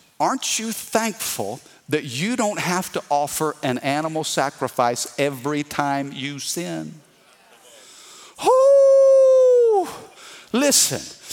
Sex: male